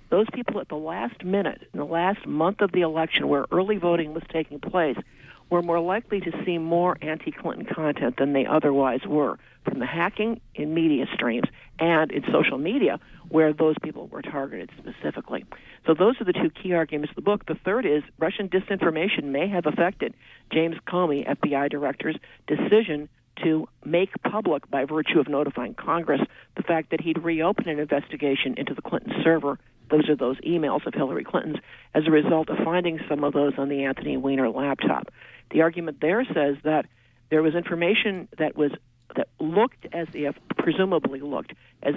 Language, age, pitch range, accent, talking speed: English, 50-69, 145-175 Hz, American, 180 wpm